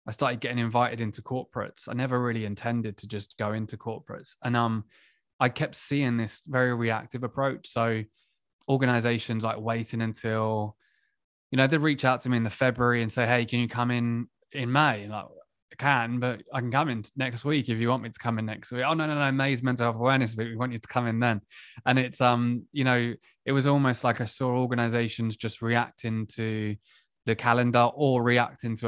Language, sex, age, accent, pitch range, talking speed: English, male, 20-39, British, 110-125 Hz, 215 wpm